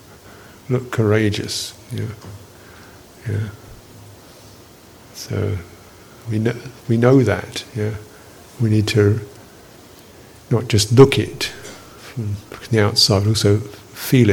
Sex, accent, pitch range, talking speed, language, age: male, British, 105-120 Hz, 100 wpm, English, 50-69